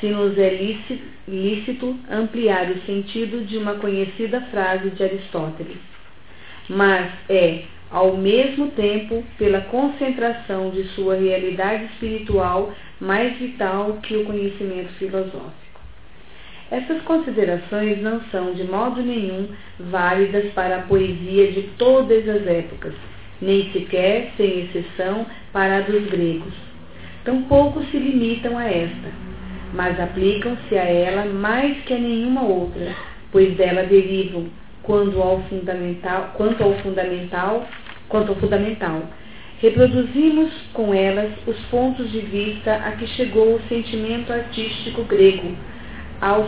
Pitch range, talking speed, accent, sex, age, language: 185-225 Hz, 120 wpm, Brazilian, female, 40-59, Portuguese